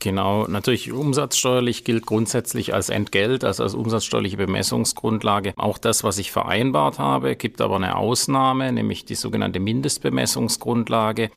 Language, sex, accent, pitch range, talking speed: German, male, German, 100-115 Hz, 130 wpm